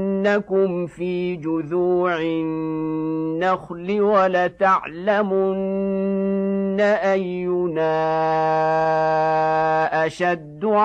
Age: 50-69